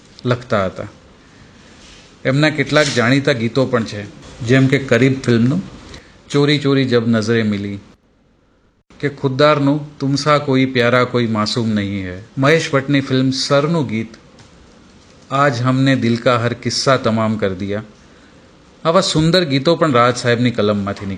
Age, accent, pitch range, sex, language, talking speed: 40-59, native, 115-150 Hz, male, Hindi, 95 wpm